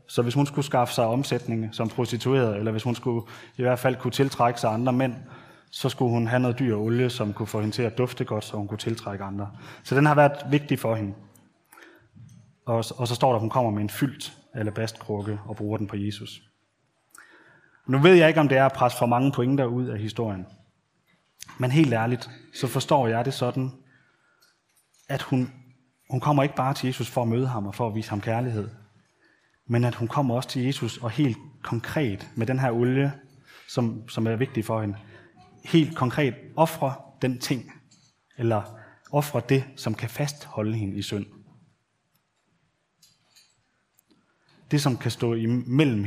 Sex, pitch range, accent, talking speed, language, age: male, 110-135 Hz, native, 190 wpm, Danish, 20-39